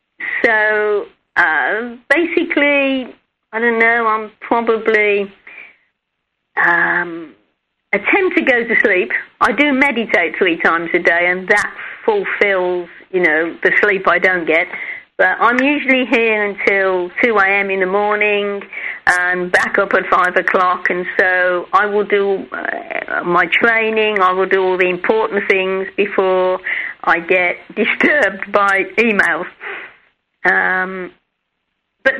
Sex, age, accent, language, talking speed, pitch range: female, 40-59, British, English, 130 wpm, 190-240 Hz